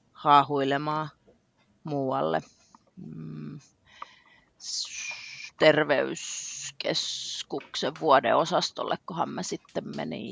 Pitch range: 130-160 Hz